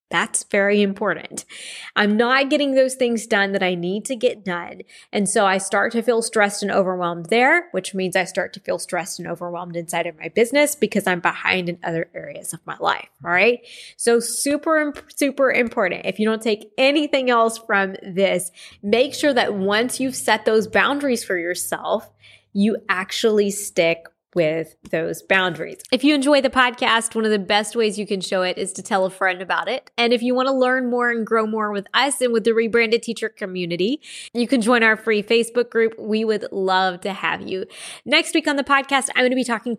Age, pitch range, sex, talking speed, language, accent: 20-39, 195-245 Hz, female, 205 wpm, English, American